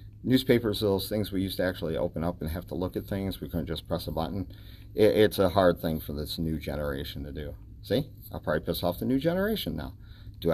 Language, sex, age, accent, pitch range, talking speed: English, male, 40-59, American, 90-120 Hz, 240 wpm